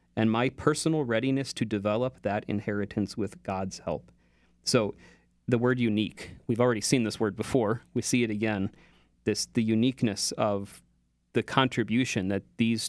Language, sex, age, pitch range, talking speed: English, male, 30-49, 95-115 Hz, 155 wpm